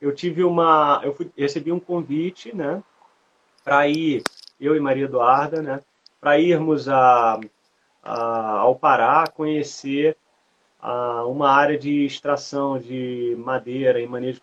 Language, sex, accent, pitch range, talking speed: Portuguese, male, Brazilian, 130-160 Hz, 135 wpm